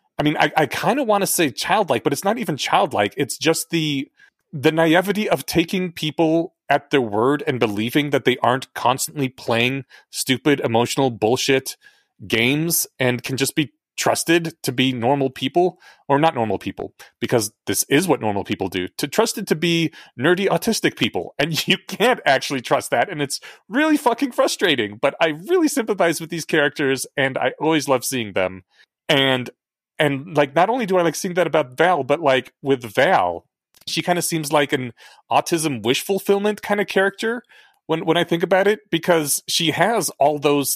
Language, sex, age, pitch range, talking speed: English, male, 30-49, 135-170 Hz, 185 wpm